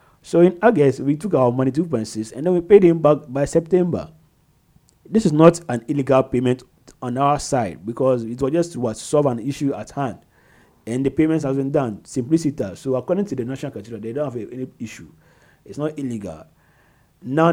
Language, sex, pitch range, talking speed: English, male, 110-145 Hz, 200 wpm